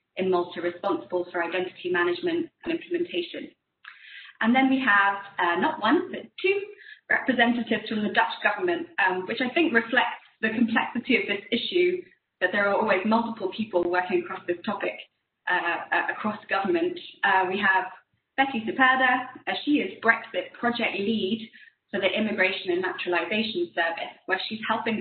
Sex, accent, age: female, British, 20-39